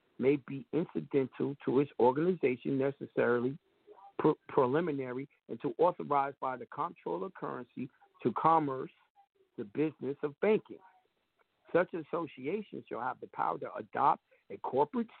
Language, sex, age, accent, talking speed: English, male, 60-79, American, 120 wpm